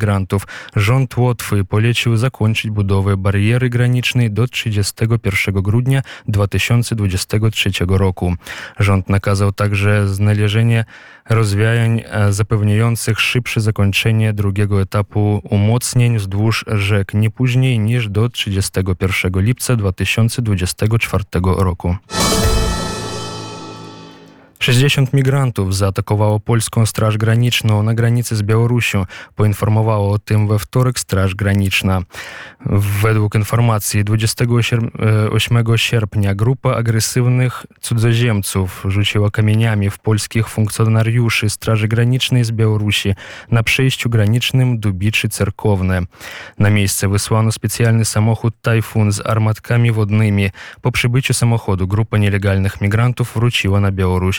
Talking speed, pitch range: 100 wpm, 100-115 Hz